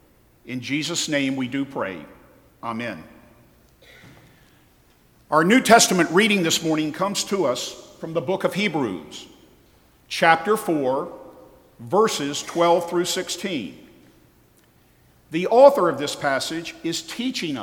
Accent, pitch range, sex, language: American, 135-200 Hz, male, English